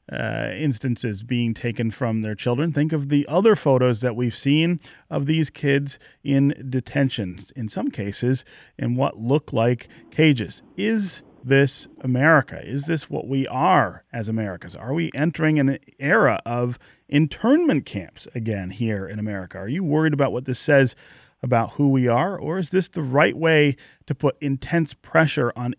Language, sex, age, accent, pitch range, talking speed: English, male, 40-59, American, 115-145 Hz, 170 wpm